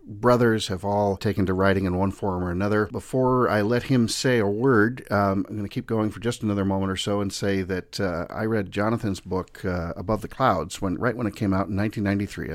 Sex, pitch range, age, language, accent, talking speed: male, 100-125 Hz, 50-69, English, American, 240 wpm